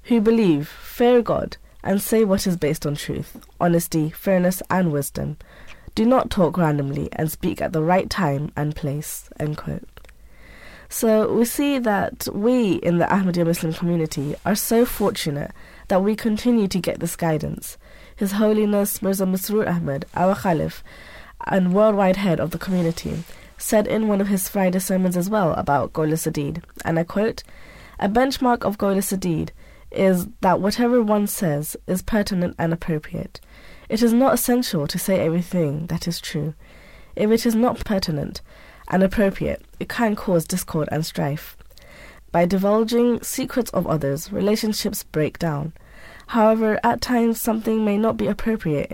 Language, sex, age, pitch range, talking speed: English, female, 20-39, 160-215 Hz, 155 wpm